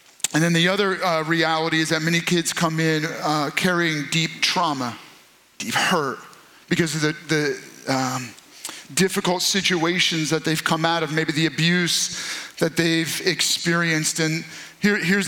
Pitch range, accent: 170-210 Hz, American